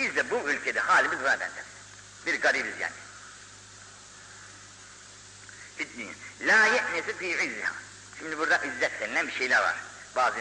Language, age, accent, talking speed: Turkish, 60-79, native, 105 wpm